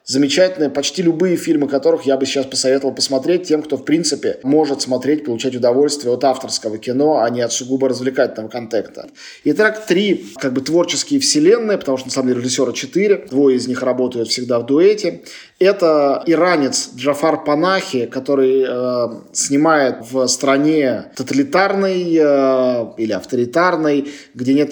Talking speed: 150 wpm